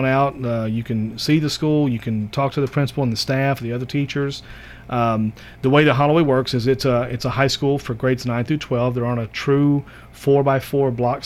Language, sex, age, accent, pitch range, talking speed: English, male, 40-59, American, 115-135 Hz, 240 wpm